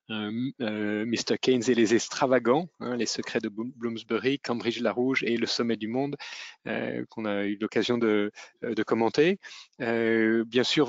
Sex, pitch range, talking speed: male, 110-125 Hz, 175 wpm